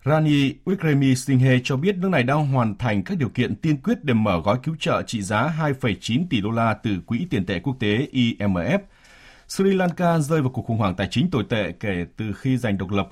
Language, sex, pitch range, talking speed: Vietnamese, male, 100-140 Hz, 225 wpm